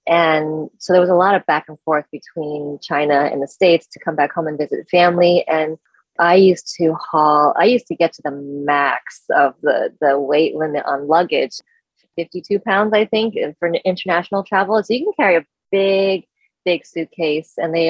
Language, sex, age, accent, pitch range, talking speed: English, female, 20-39, American, 155-195 Hz, 195 wpm